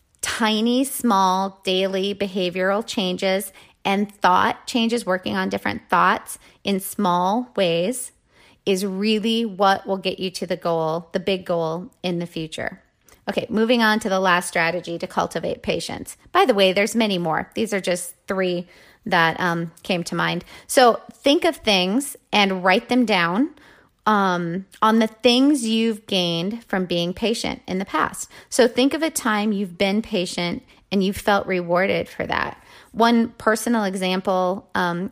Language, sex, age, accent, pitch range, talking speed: English, female, 30-49, American, 180-225 Hz, 160 wpm